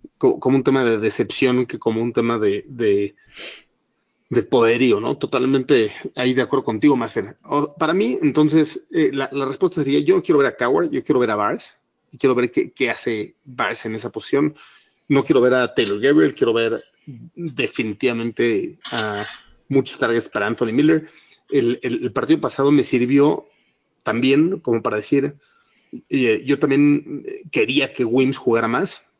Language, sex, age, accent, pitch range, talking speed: Spanish, male, 30-49, Mexican, 125-165 Hz, 170 wpm